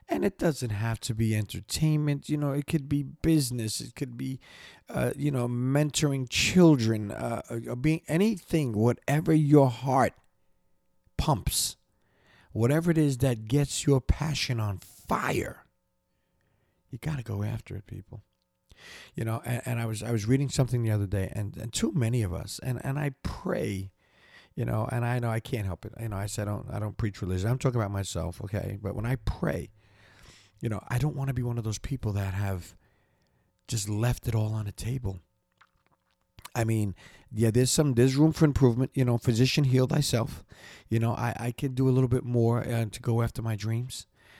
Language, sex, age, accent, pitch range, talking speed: English, male, 40-59, American, 105-130 Hz, 195 wpm